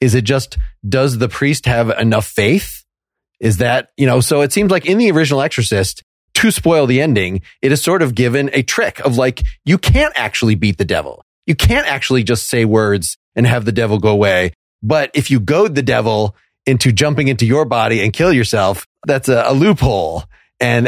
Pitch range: 115-160 Hz